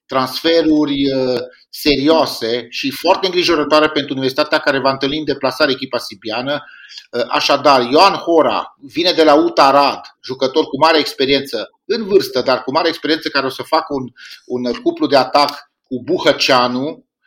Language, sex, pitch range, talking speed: Romanian, male, 125-155 Hz, 150 wpm